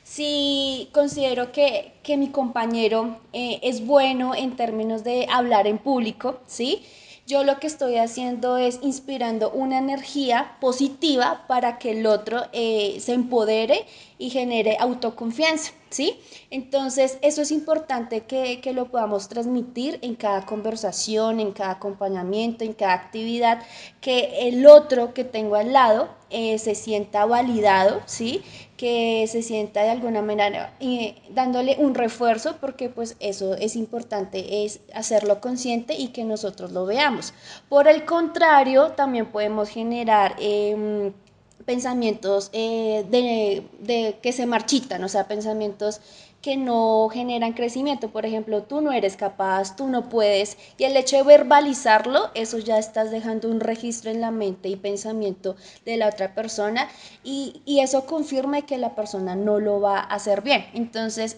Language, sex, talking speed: Spanish, female, 150 wpm